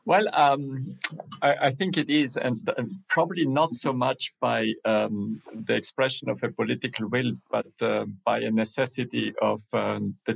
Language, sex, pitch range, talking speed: English, male, 110-125 Hz, 170 wpm